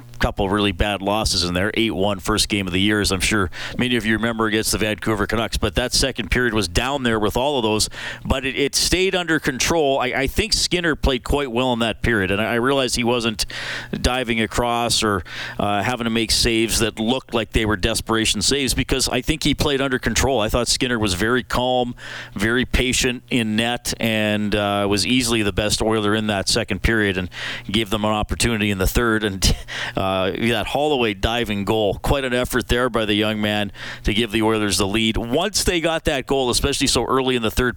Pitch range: 105-125 Hz